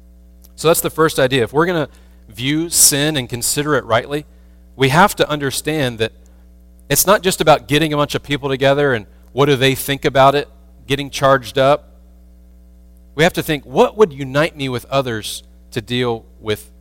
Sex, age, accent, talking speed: male, 40-59, American, 190 wpm